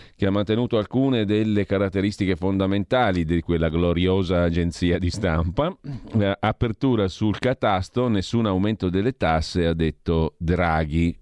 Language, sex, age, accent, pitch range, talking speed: Italian, male, 40-59, native, 85-110 Hz, 125 wpm